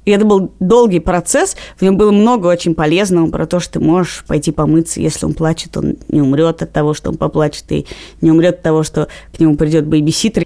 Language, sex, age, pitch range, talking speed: Russian, female, 20-39, 170-280 Hz, 225 wpm